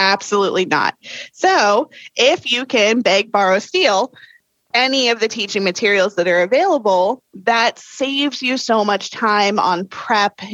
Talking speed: 140 wpm